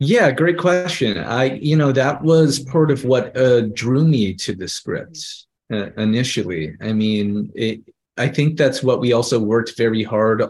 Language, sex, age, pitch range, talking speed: English, male, 30-49, 95-120 Hz, 165 wpm